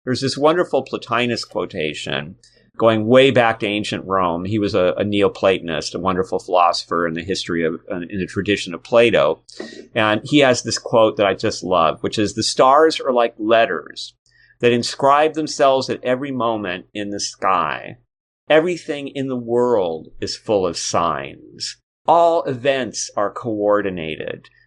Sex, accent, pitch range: male, American, 100-130 Hz